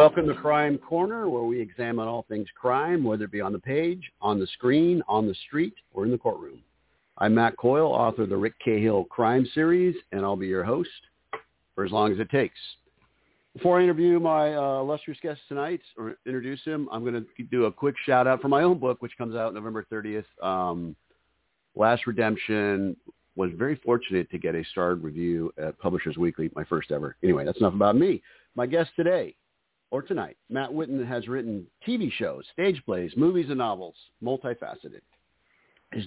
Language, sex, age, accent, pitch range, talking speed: English, male, 50-69, American, 105-145 Hz, 190 wpm